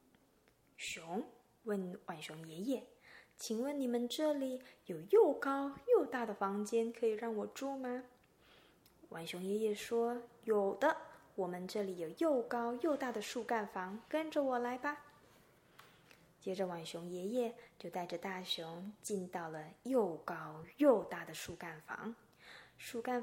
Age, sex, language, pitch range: 20-39, female, Chinese, 180-250 Hz